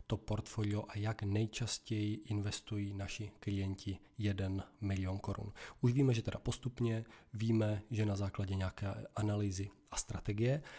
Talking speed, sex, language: 135 wpm, male, Czech